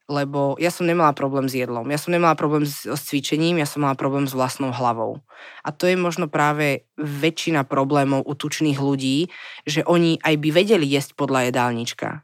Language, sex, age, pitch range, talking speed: Slovak, female, 20-39, 140-175 Hz, 190 wpm